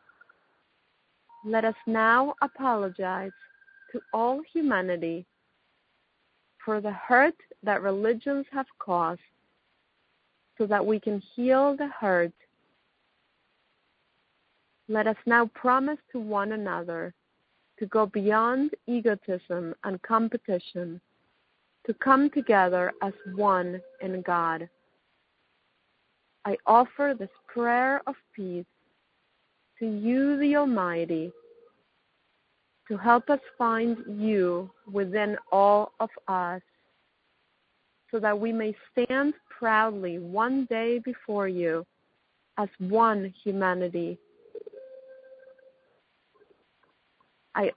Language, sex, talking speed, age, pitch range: English, female, 95 wpm, 30-49, 195-270 Hz